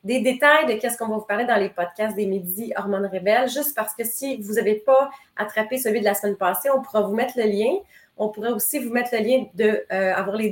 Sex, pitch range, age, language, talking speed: female, 205-255 Hz, 30-49, French, 255 wpm